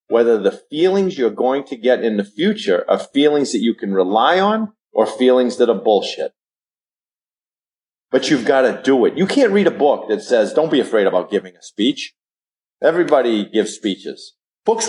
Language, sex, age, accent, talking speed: English, male, 40-59, American, 185 wpm